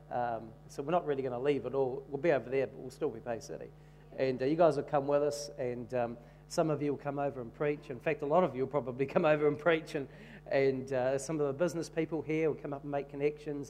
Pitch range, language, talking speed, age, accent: 135-150 Hz, English, 285 wpm, 40-59, Australian